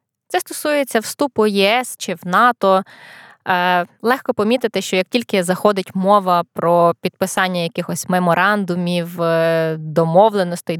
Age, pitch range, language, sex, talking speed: 20-39, 180-235 Hz, Ukrainian, female, 110 wpm